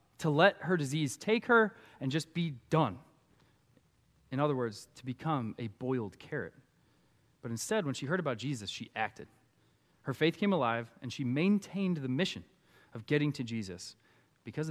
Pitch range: 120-180 Hz